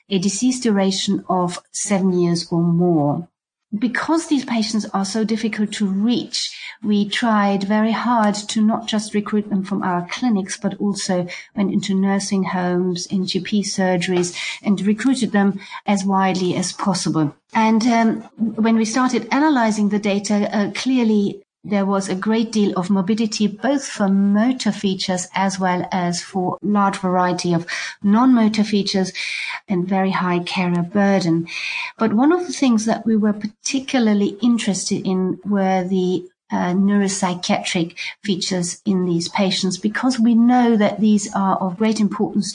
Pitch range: 185-220 Hz